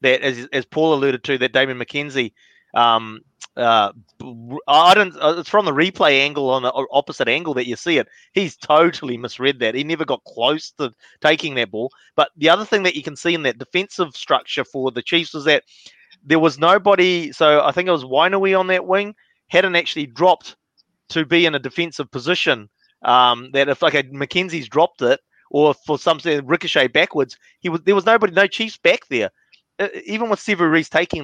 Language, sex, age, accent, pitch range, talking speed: English, male, 30-49, Australian, 135-180 Hz, 200 wpm